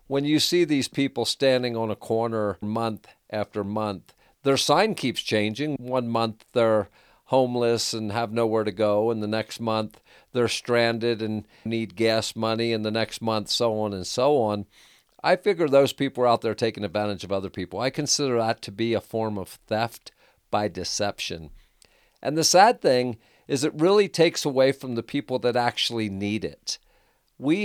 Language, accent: English, American